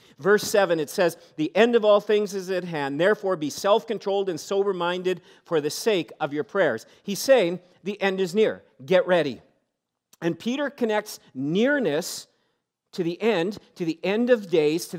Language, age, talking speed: English, 50-69, 175 wpm